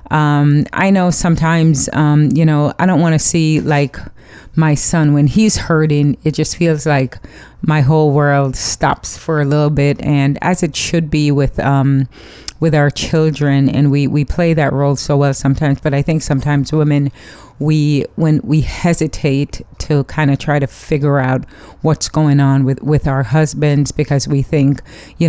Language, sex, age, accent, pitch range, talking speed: English, female, 30-49, American, 140-155 Hz, 180 wpm